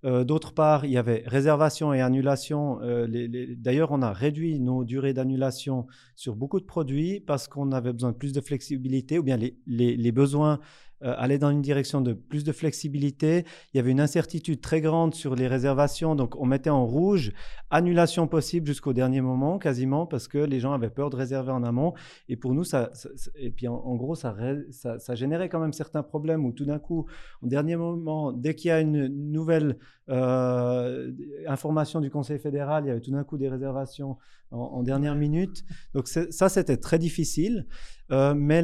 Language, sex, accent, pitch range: French, male, French, 130-155 Hz